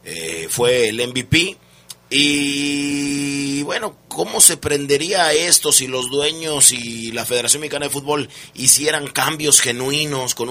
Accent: Mexican